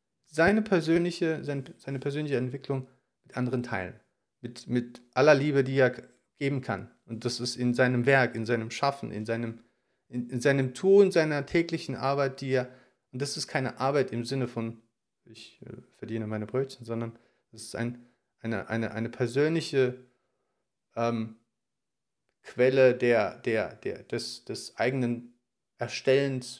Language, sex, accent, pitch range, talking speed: German, male, German, 120-135 Hz, 150 wpm